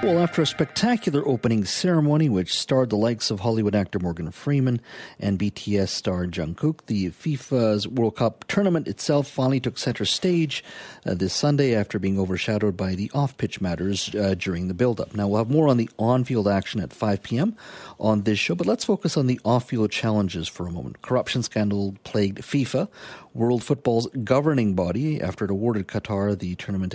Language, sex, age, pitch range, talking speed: English, male, 50-69, 95-130 Hz, 175 wpm